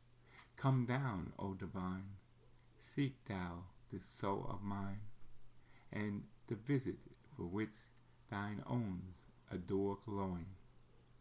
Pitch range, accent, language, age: 95-120 Hz, American, English, 50-69